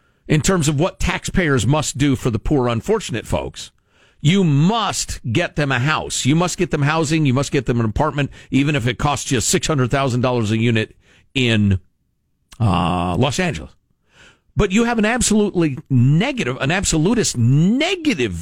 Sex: male